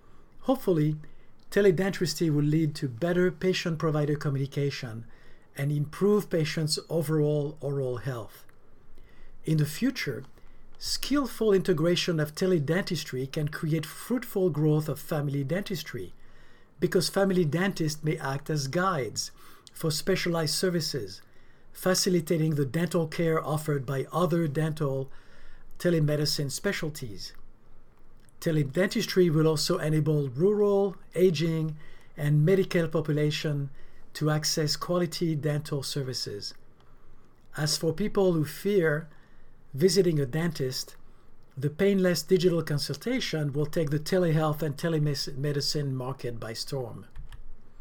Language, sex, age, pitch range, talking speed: English, male, 50-69, 140-175 Hz, 105 wpm